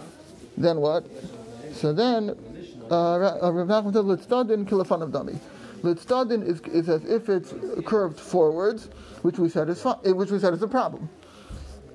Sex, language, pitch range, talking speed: male, English, 170-215 Hz, 175 wpm